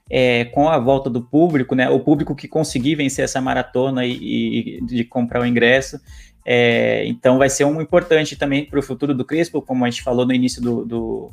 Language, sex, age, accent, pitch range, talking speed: Portuguese, male, 20-39, Brazilian, 125-150 Hz, 210 wpm